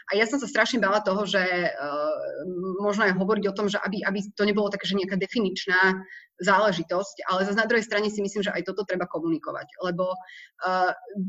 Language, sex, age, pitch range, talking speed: Slovak, female, 30-49, 180-210 Hz, 195 wpm